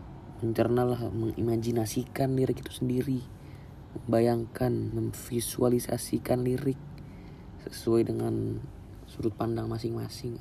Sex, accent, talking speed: male, native, 75 wpm